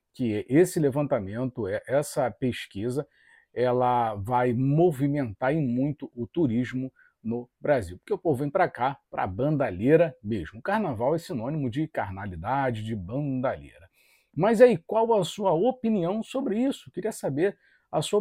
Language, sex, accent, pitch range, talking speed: Portuguese, male, Brazilian, 125-170 Hz, 150 wpm